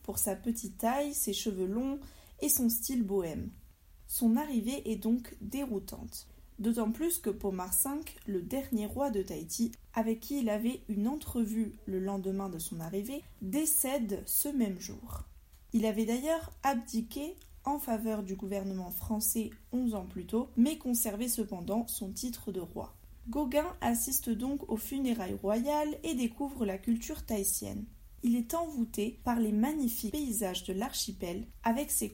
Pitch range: 210-270 Hz